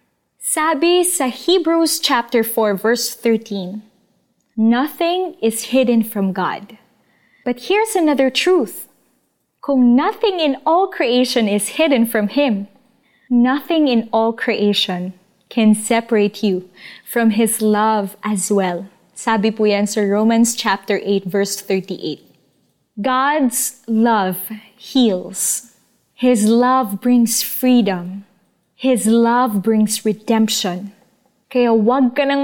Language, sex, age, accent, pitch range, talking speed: Filipino, female, 20-39, native, 205-260 Hz, 110 wpm